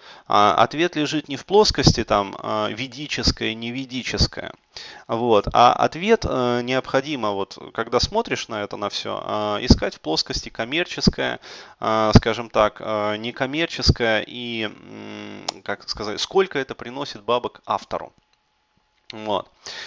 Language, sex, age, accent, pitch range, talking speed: Russian, male, 20-39, native, 105-135 Hz, 105 wpm